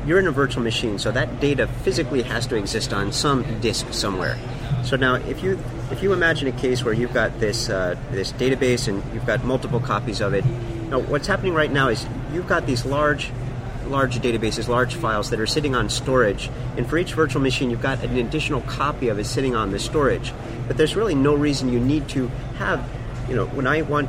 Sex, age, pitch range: male, 40-59, 120-140 Hz